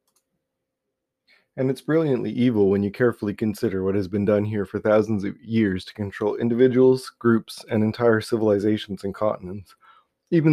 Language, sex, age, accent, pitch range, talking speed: English, male, 20-39, American, 105-130 Hz, 155 wpm